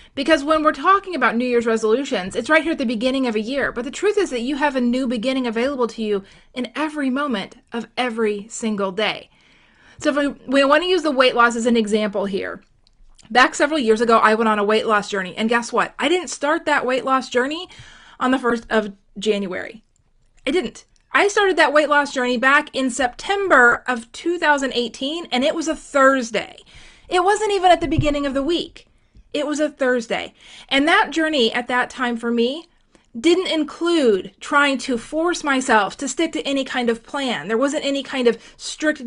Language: English